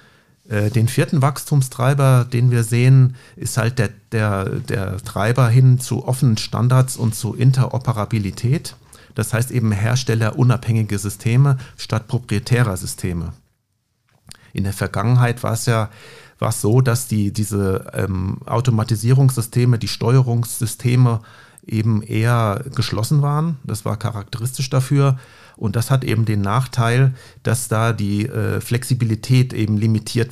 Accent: German